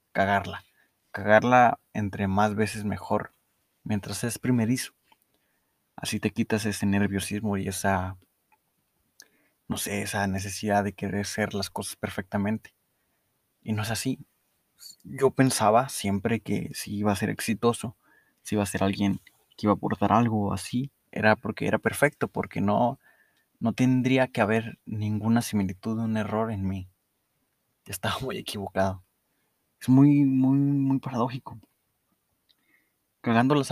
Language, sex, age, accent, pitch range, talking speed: Spanish, male, 20-39, Mexican, 100-115 Hz, 135 wpm